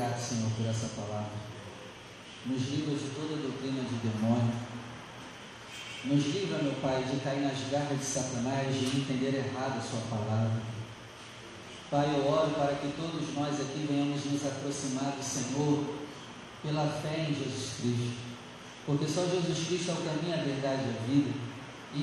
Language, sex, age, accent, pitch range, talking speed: Portuguese, male, 40-59, Brazilian, 130-170 Hz, 160 wpm